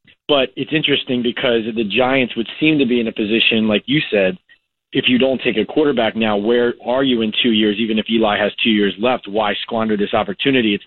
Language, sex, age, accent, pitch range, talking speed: English, male, 30-49, American, 115-140 Hz, 225 wpm